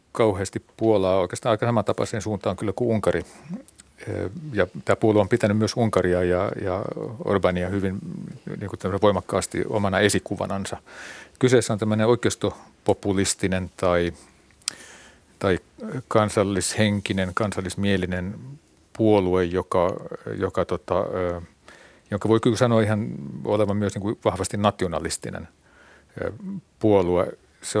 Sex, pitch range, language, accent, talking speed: male, 95-110 Hz, Finnish, native, 105 wpm